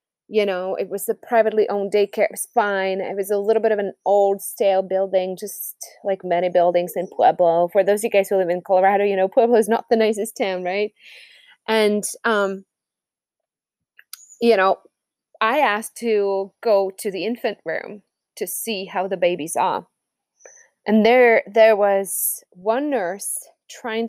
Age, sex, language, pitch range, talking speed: 20-39, female, English, 195-230 Hz, 170 wpm